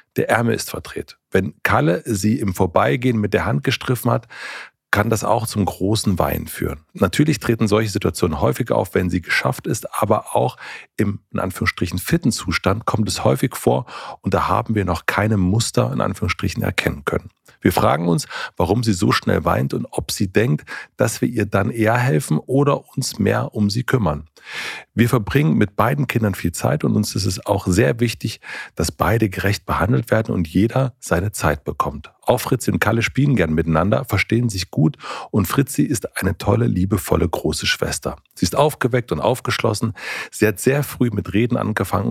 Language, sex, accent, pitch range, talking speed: German, male, German, 95-120 Hz, 185 wpm